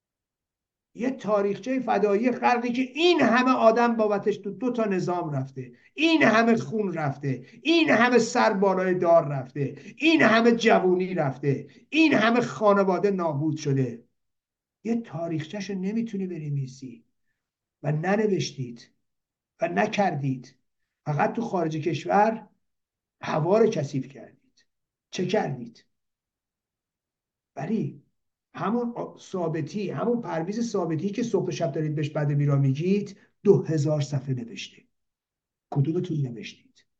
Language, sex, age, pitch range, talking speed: Persian, male, 50-69, 150-220 Hz, 110 wpm